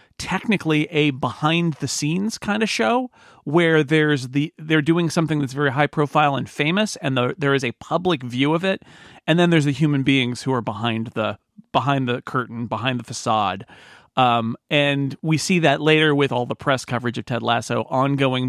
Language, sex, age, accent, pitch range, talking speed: English, male, 40-59, American, 125-155 Hz, 195 wpm